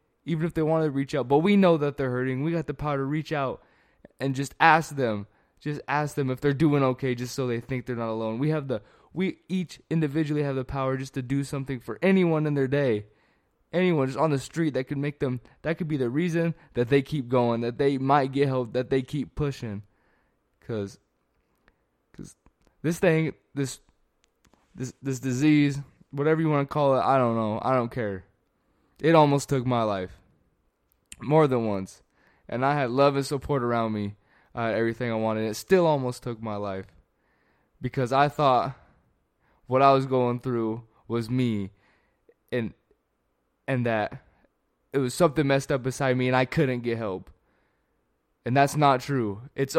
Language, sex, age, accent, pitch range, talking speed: English, male, 20-39, American, 115-145 Hz, 195 wpm